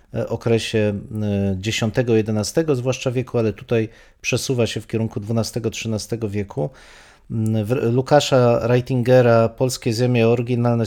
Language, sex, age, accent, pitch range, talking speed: Polish, male, 40-59, native, 110-130 Hz, 95 wpm